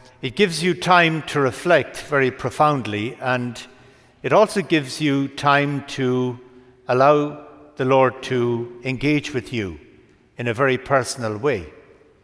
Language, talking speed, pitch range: English, 130 wpm, 120-145 Hz